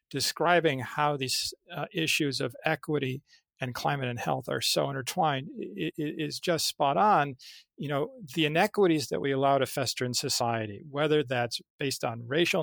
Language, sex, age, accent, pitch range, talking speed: English, male, 50-69, American, 130-160 Hz, 160 wpm